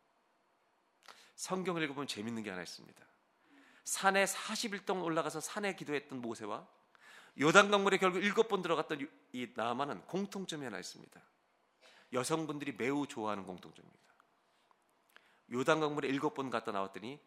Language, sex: Korean, male